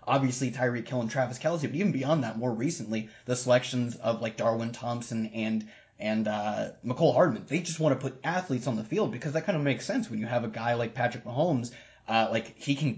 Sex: male